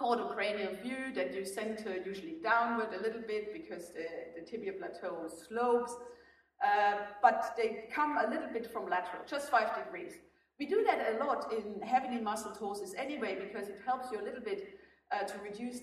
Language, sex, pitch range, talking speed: English, female, 195-260 Hz, 185 wpm